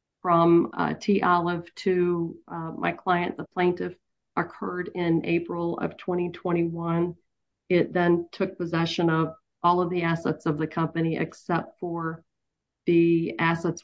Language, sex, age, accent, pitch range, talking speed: English, female, 40-59, American, 170-195 Hz, 135 wpm